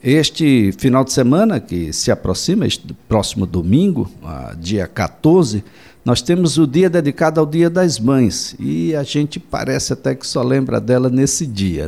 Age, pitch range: 60-79, 115-170 Hz